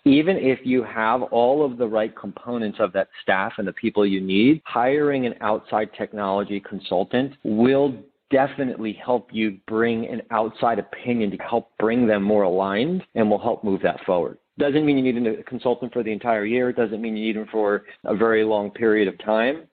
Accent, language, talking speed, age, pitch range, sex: American, English, 200 wpm, 40-59, 115-145 Hz, male